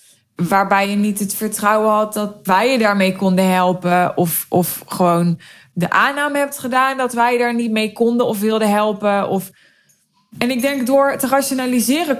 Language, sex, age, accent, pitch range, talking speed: Dutch, female, 20-39, Dutch, 185-225 Hz, 170 wpm